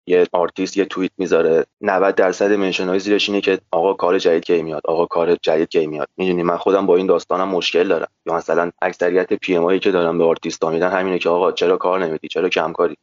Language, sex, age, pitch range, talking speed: Persian, male, 20-39, 85-110 Hz, 210 wpm